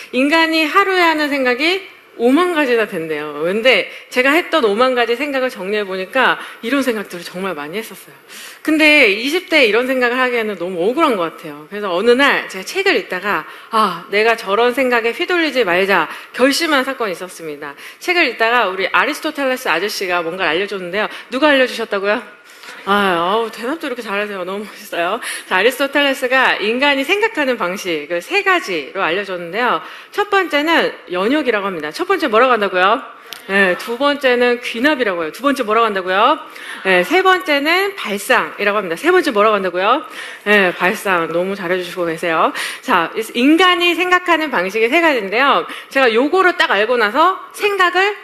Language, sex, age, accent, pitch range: Korean, female, 40-59, native, 200-320 Hz